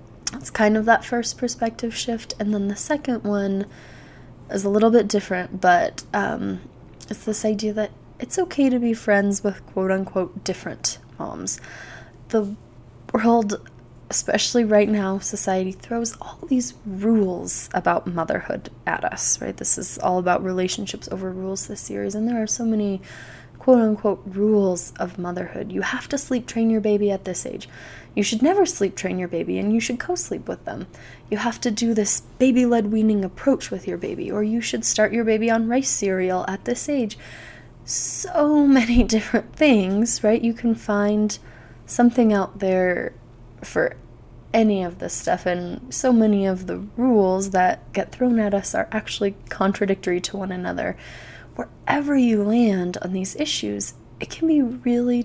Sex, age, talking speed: female, 20-39, 165 wpm